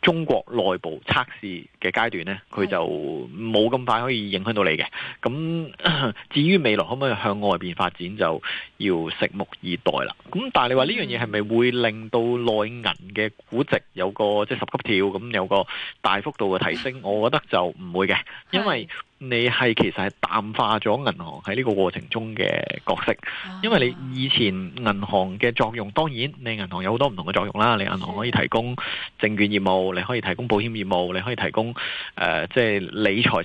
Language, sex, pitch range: Chinese, male, 100-125 Hz